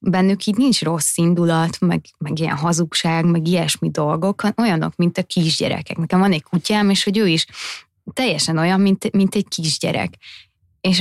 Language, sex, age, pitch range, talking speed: Hungarian, female, 20-39, 165-190 Hz, 170 wpm